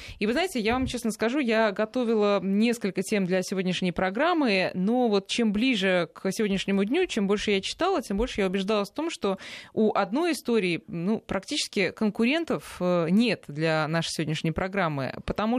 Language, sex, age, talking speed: Russian, female, 20-39, 170 wpm